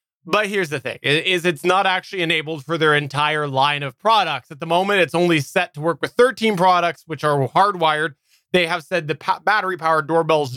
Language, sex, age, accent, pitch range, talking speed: English, male, 20-39, American, 145-190 Hz, 205 wpm